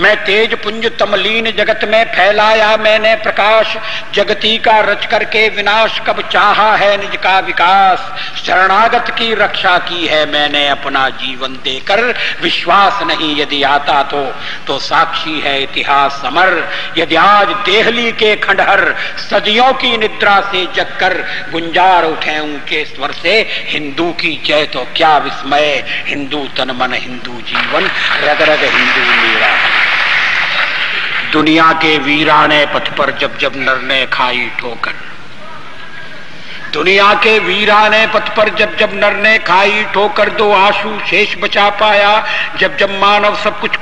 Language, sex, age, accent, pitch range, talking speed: Hindi, male, 60-79, native, 150-215 Hz, 135 wpm